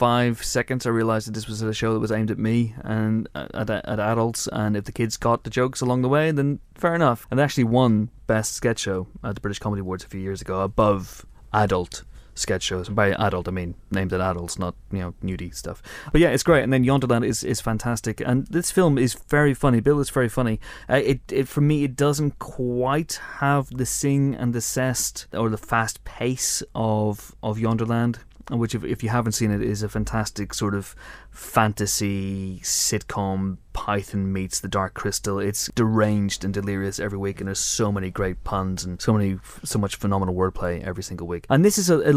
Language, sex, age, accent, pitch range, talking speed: English, male, 30-49, British, 105-125 Hz, 215 wpm